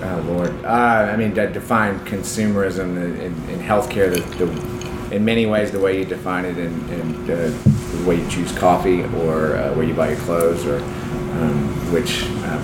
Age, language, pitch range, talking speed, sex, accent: 30-49, English, 85-105 Hz, 195 wpm, male, American